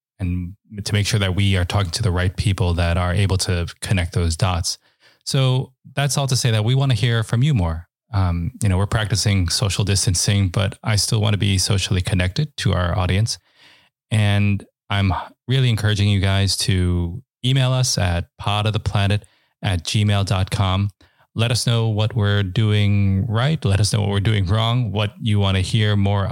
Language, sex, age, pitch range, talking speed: English, male, 20-39, 95-115 Hz, 195 wpm